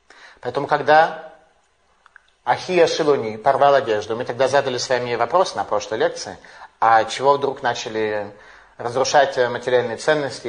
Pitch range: 135-185 Hz